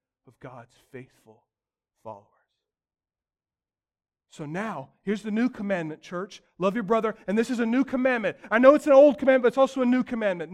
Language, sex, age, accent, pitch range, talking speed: English, male, 30-49, American, 210-265 Hz, 180 wpm